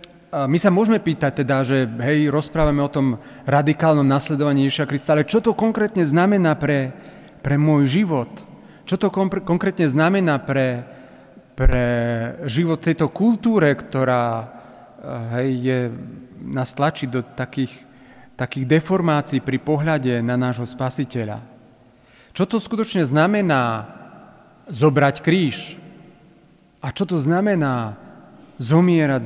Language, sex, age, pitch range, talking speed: Slovak, male, 40-59, 130-175 Hz, 115 wpm